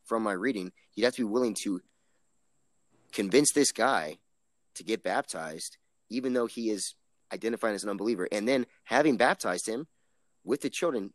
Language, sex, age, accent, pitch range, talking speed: English, male, 30-49, American, 95-125 Hz, 165 wpm